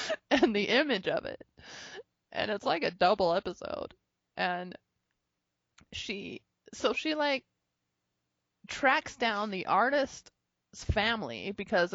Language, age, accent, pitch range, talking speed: English, 20-39, American, 180-260 Hz, 110 wpm